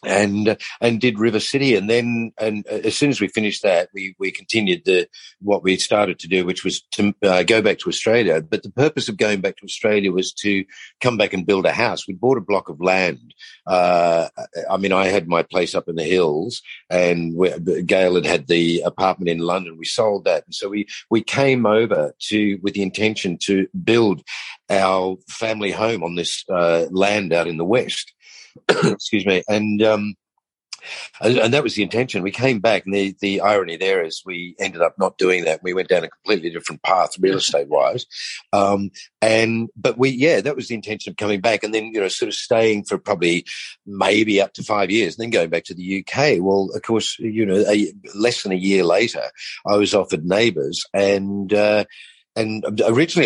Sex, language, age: male, English, 50-69